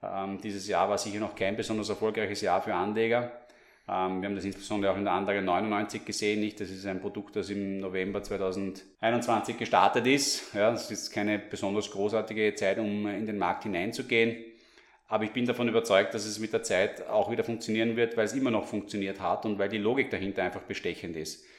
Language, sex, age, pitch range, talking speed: German, male, 30-49, 100-115 Hz, 195 wpm